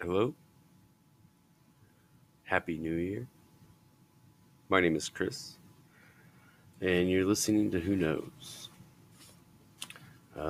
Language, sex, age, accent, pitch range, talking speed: English, male, 30-49, American, 85-115 Hz, 85 wpm